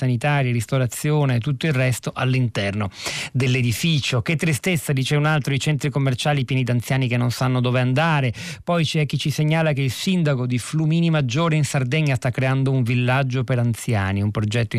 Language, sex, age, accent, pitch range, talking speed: Italian, male, 40-59, native, 120-145 Hz, 185 wpm